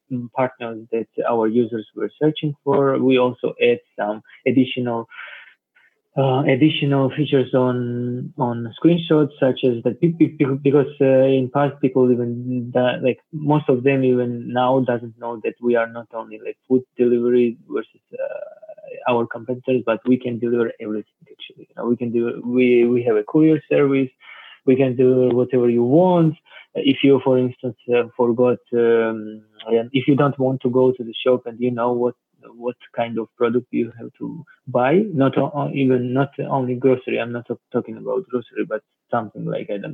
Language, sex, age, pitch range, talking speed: English, male, 20-39, 115-135 Hz, 170 wpm